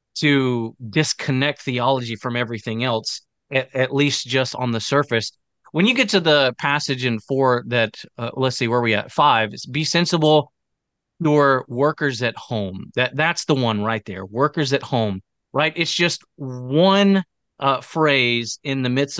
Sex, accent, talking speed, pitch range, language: male, American, 170 wpm, 120-155 Hz, English